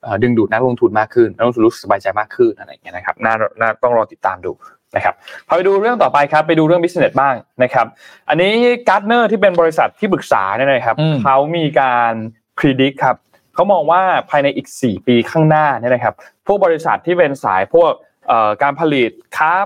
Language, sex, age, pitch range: Thai, male, 20-39, 120-165 Hz